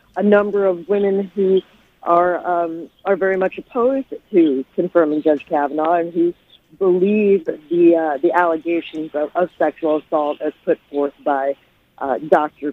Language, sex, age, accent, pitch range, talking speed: English, female, 40-59, American, 160-200 Hz, 150 wpm